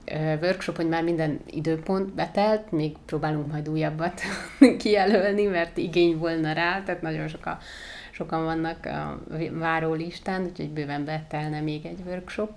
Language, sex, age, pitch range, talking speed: Hungarian, female, 30-49, 155-180 Hz, 135 wpm